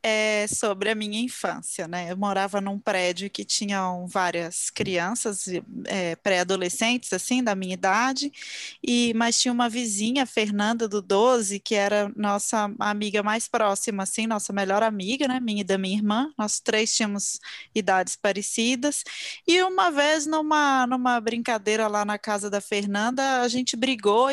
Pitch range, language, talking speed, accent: 215-270 Hz, Portuguese, 155 wpm, Brazilian